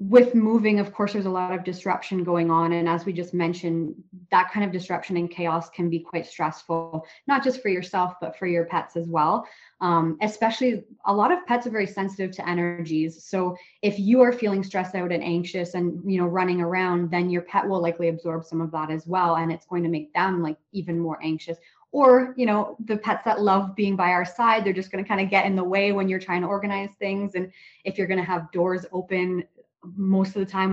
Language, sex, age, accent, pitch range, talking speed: English, female, 20-39, American, 175-205 Hz, 235 wpm